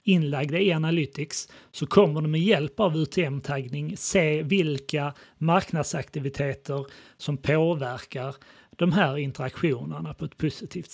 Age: 30-49